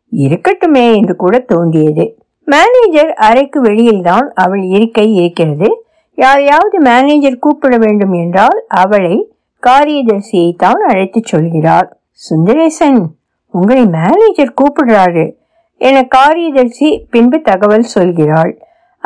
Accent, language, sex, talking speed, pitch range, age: native, Tamil, female, 90 wpm, 200-300 Hz, 60-79